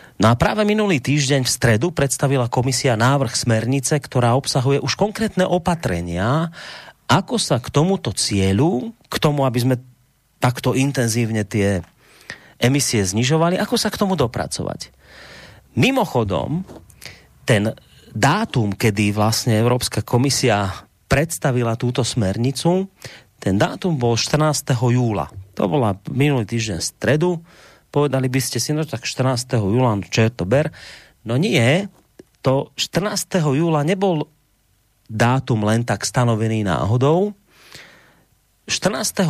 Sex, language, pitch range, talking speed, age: male, Slovak, 110-145 Hz, 125 wpm, 30-49